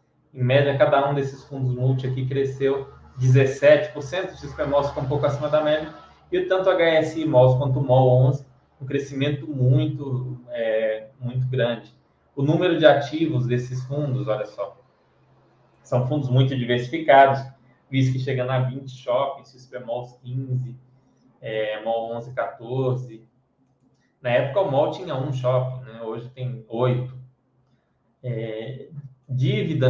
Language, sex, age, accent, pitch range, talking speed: Portuguese, male, 20-39, Brazilian, 125-145 Hz, 140 wpm